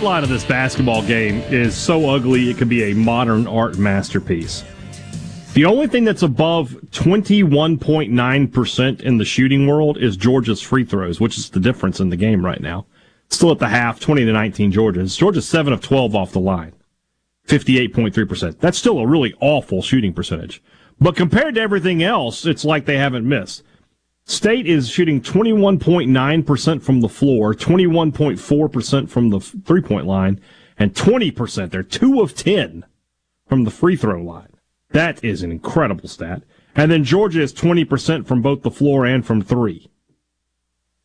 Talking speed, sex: 165 wpm, male